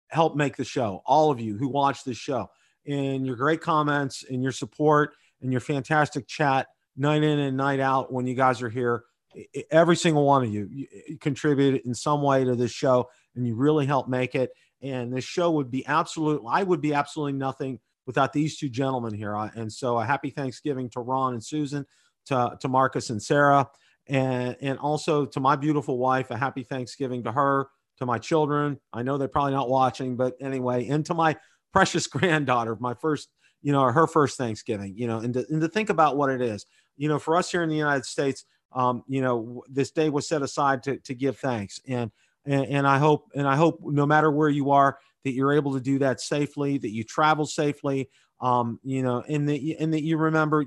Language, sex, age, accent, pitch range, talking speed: English, male, 40-59, American, 130-150 Hz, 215 wpm